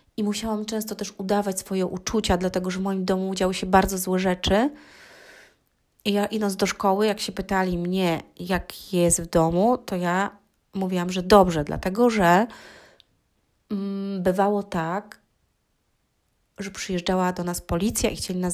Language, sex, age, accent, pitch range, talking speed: Polish, female, 30-49, native, 180-205 Hz, 155 wpm